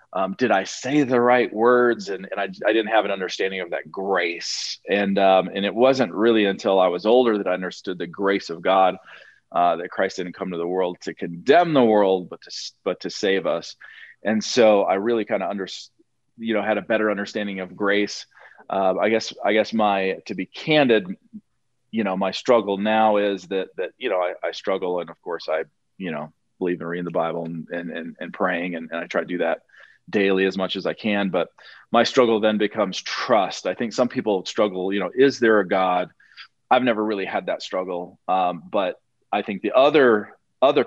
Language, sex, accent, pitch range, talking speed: English, male, American, 95-115 Hz, 215 wpm